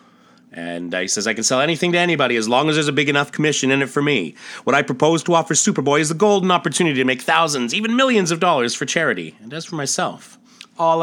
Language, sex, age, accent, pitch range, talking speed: English, male, 30-49, American, 110-150 Hz, 250 wpm